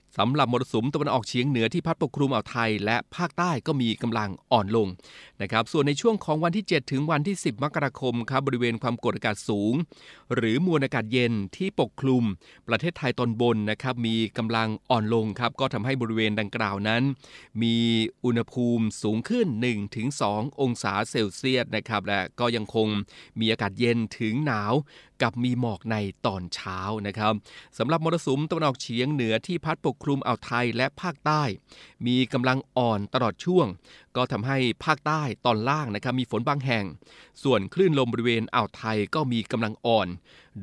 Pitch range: 110-135 Hz